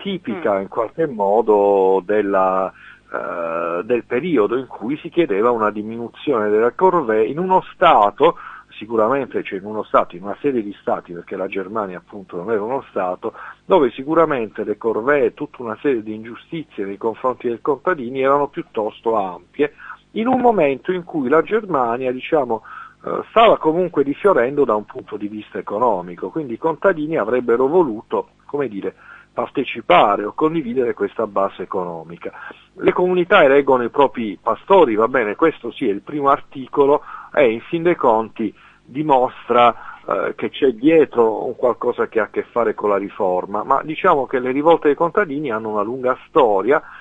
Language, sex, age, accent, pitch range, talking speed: Italian, male, 50-69, native, 110-180 Hz, 165 wpm